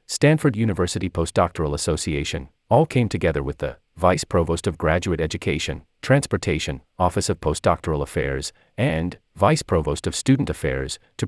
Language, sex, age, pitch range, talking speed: English, male, 40-59, 80-125 Hz, 140 wpm